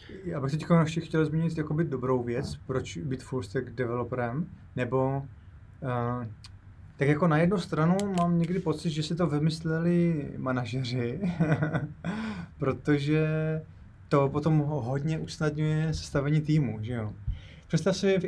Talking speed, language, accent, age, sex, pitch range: 125 wpm, Czech, native, 20-39, male, 125-160 Hz